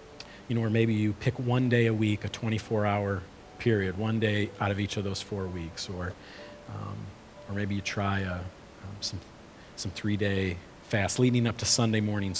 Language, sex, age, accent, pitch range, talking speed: English, male, 40-59, American, 95-110 Hz, 190 wpm